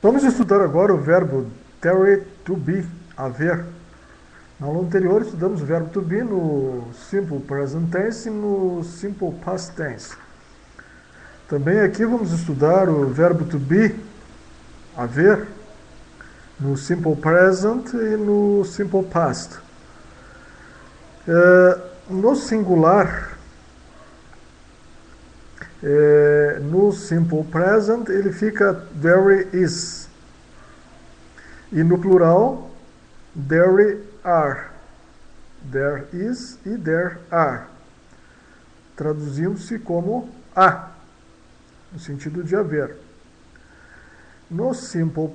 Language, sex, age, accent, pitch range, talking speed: English, male, 50-69, Brazilian, 150-200 Hz, 95 wpm